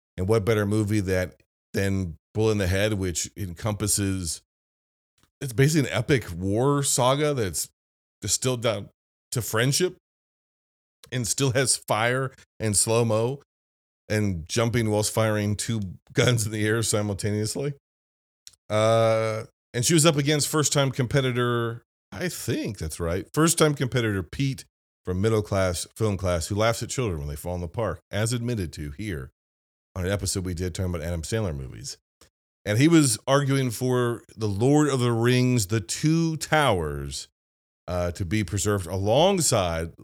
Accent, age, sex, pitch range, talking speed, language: American, 40-59, male, 85-125 Hz, 150 wpm, English